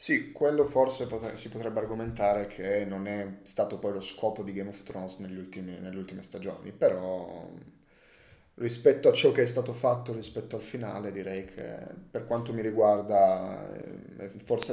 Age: 10-29